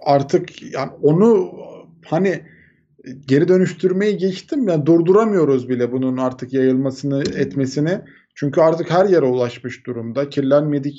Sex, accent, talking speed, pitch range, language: male, native, 120 wpm, 130-165 Hz, Turkish